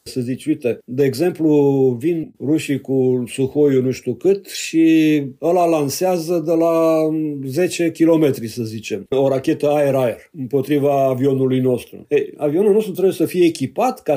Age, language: 50-69, Romanian